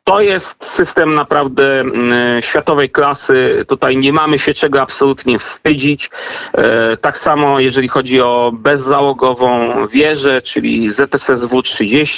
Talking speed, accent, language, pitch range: 110 wpm, native, Polish, 120-150 Hz